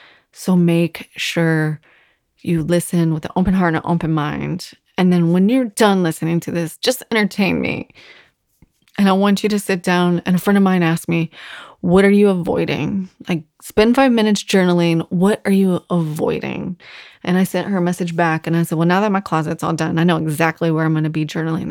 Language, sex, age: English, female, 20-39